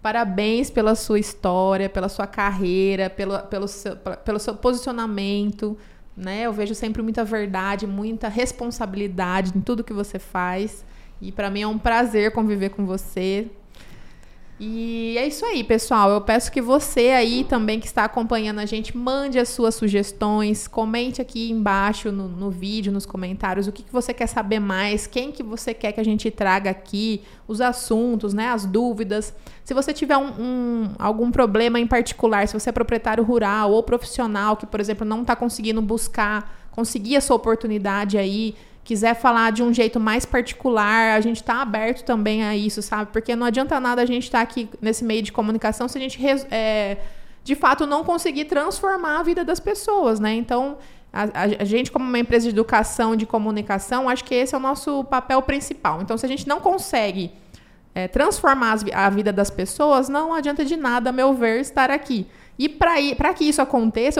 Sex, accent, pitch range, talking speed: female, Brazilian, 210-255 Hz, 185 wpm